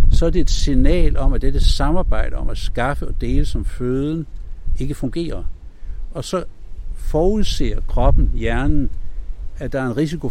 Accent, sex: native, male